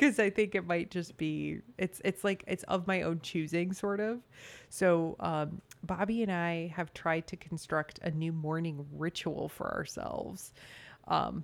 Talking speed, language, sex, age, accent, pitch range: 175 wpm, English, female, 30-49, American, 155-185 Hz